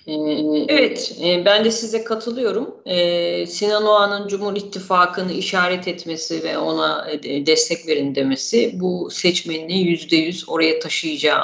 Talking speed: 110 wpm